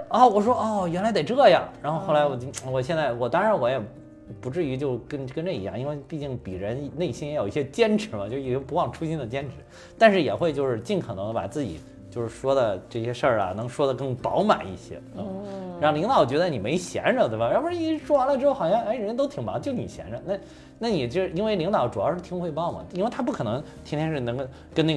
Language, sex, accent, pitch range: Chinese, male, native, 125-195 Hz